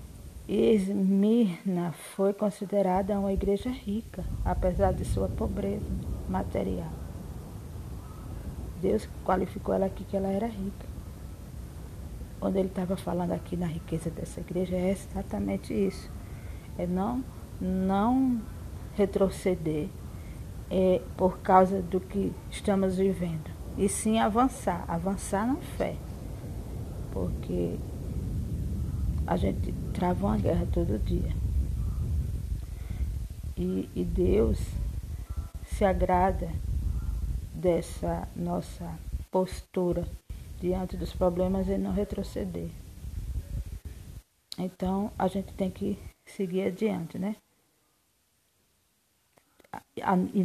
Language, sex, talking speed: Portuguese, female, 95 wpm